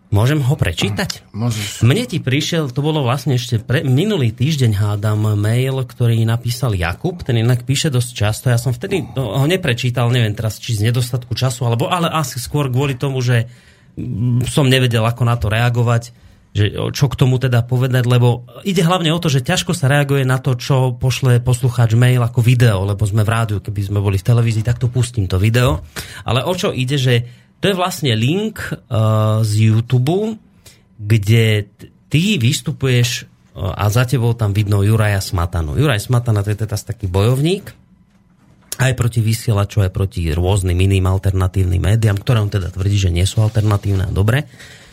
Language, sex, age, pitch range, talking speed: Slovak, male, 30-49, 105-130 Hz, 175 wpm